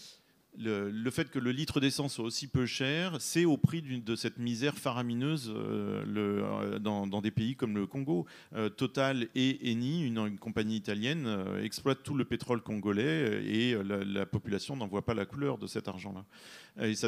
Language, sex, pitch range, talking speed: French, male, 110-130 Hz, 165 wpm